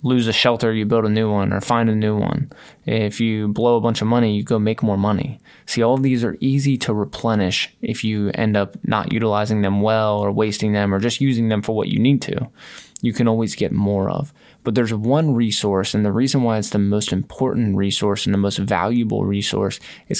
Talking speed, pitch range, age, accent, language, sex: 230 wpm, 105-120 Hz, 20-39, American, English, male